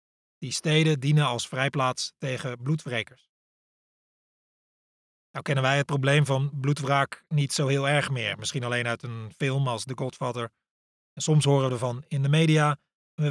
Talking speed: 160 wpm